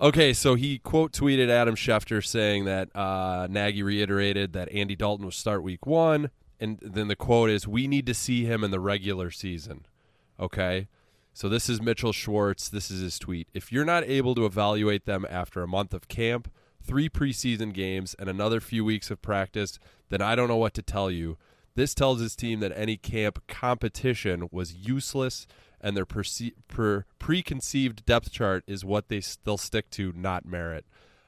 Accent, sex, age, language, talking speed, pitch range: American, male, 20-39, English, 180 wpm, 95-120 Hz